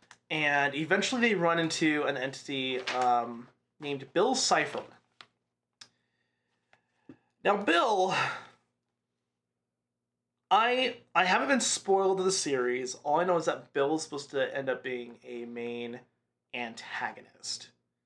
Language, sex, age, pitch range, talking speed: English, male, 20-39, 130-205 Hz, 120 wpm